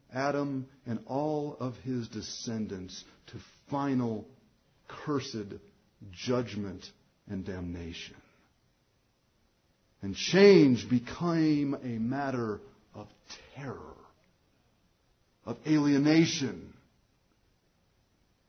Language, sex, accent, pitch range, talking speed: English, male, American, 125-205 Hz, 70 wpm